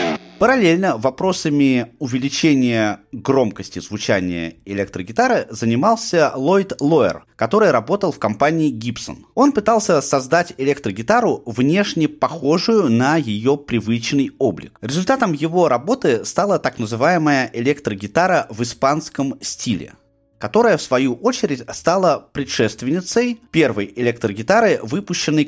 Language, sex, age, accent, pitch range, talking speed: Russian, male, 30-49, native, 115-165 Hz, 100 wpm